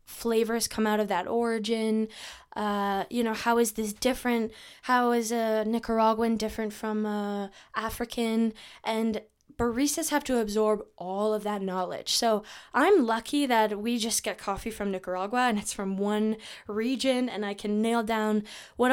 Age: 10-29